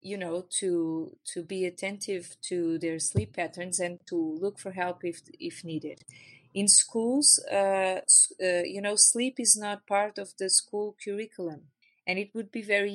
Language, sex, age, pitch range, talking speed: English, female, 30-49, 175-210 Hz, 170 wpm